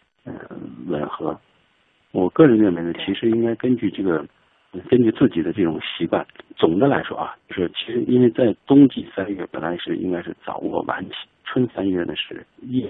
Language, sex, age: Chinese, male, 60-79